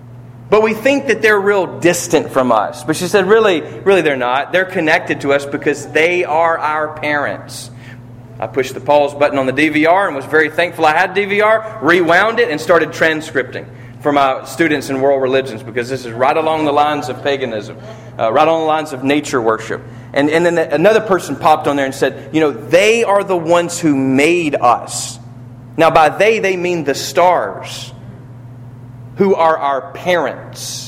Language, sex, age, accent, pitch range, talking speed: English, male, 40-59, American, 125-170 Hz, 190 wpm